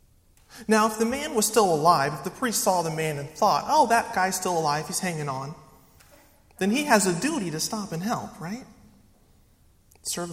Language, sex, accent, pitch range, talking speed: English, male, American, 145-190 Hz, 200 wpm